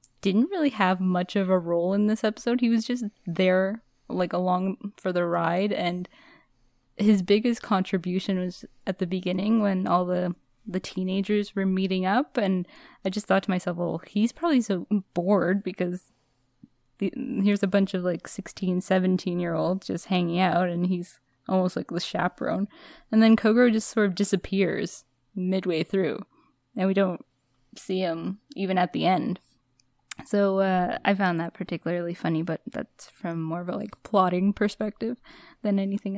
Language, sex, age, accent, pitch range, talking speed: English, female, 10-29, American, 180-205 Hz, 165 wpm